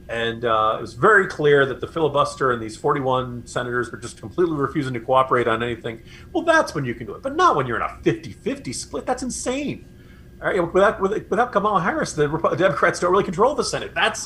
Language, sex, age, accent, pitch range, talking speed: English, male, 40-59, American, 130-190 Hz, 225 wpm